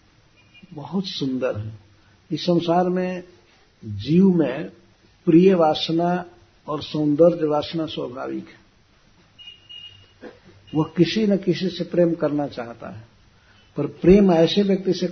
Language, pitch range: Hindi, 105-165 Hz